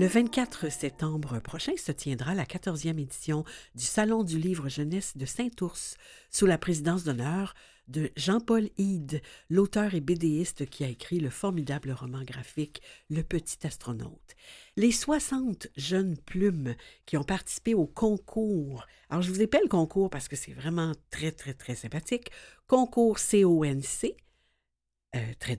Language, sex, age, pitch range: French, female, 60-79, 145-200 Hz